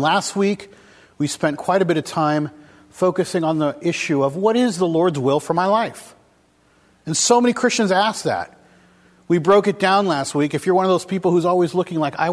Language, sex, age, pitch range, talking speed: English, male, 40-59, 135-175 Hz, 220 wpm